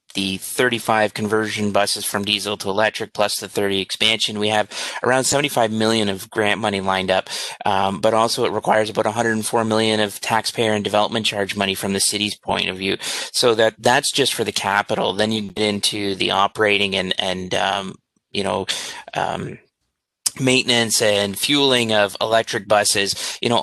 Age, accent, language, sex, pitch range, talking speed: 30-49, American, English, male, 100-115 Hz, 175 wpm